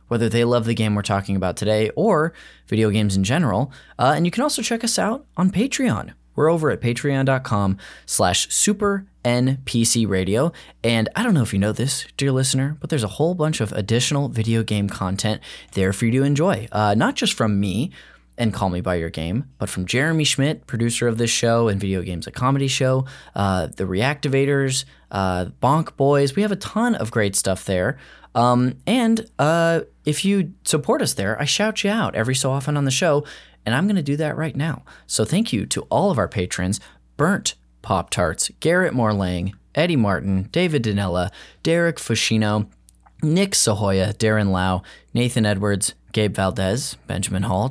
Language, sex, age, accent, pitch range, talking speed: English, male, 10-29, American, 100-155 Hz, 190 wpm